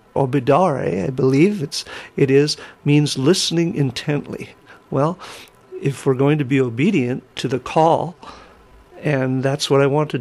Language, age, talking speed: English, 50-69, 155 wpm